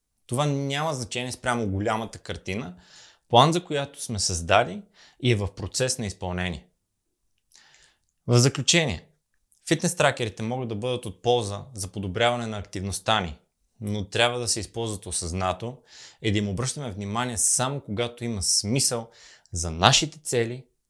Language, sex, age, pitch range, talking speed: Bulgarian, male, 20-39, 100-125 Hz, 140 wpm